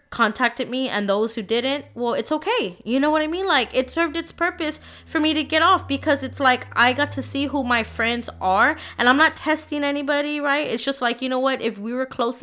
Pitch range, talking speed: 195-250 Hz, 245 wpm